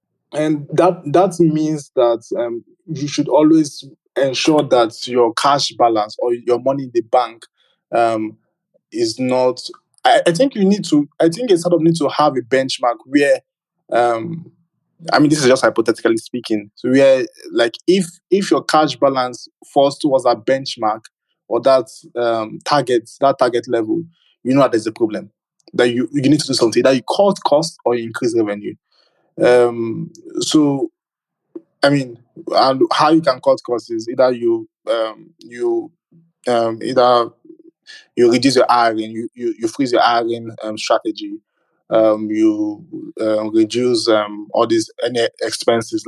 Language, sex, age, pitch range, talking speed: English, male, 20-39, 115-175 Hz, 165 wpm